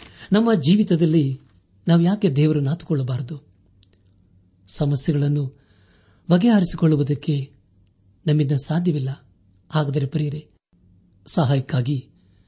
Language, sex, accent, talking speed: Kannada, male, native, 65 wpm